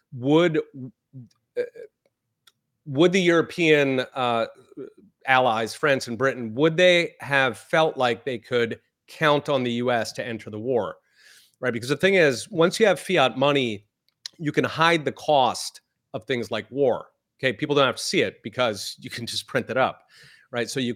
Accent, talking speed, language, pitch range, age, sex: American, 180 wpm, English, 120-150 Hz, 30-49, male